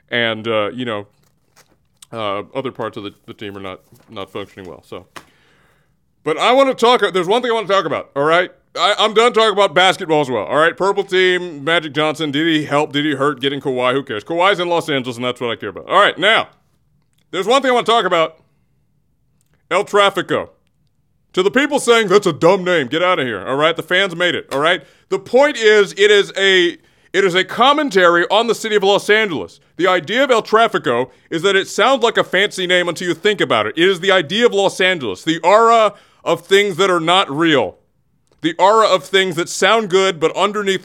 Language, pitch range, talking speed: English, 155-210 Hz, 230 wpm